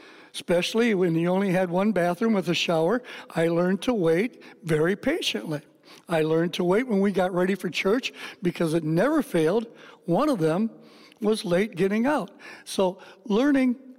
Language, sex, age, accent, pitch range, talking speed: English, male, 60-79, American, 170-225 Hz, 165 wpm